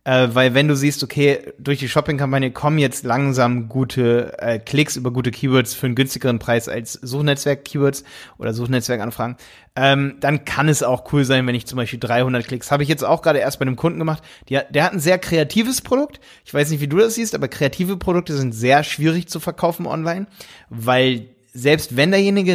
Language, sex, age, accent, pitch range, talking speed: German, male, 30-49, German, 125-150 Hz, 200 wpm